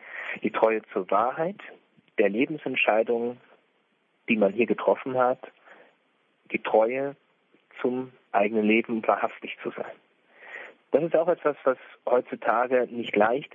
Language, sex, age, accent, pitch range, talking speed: German, male, 40-59, German, 110-140 Hz, 120 wpm